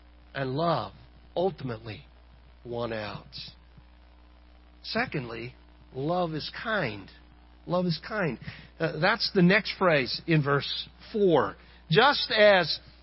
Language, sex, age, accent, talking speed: English, male, 50-69, American, 100 wpm